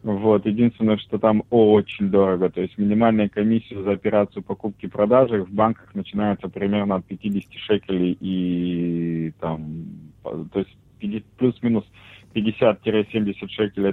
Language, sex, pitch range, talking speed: English, male, 95-110 Hz, 125 wpm